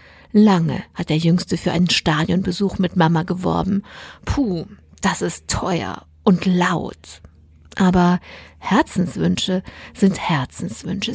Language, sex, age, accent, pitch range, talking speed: German, female, 50-69, German, 165-195 Hz, 110 wpm